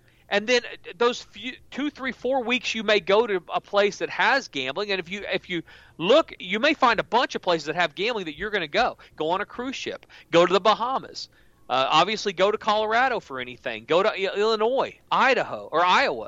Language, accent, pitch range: English, American, 155-235 Hz